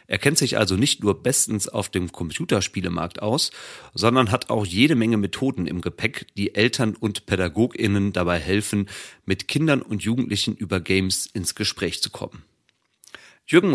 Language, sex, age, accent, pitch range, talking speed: German, male, 40-59, German, 95-125 Hz, 155 wpm